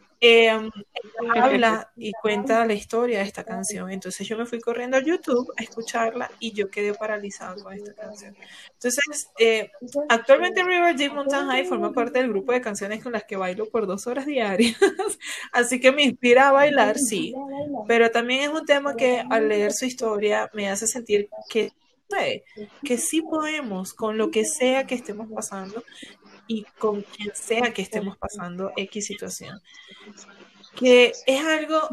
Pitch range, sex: 210-255 Hz, female